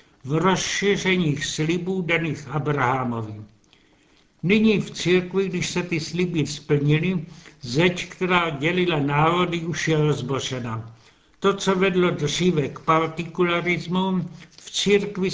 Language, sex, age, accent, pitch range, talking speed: Czech, male, 70-89, native, 150-175 Hz, 110 wpm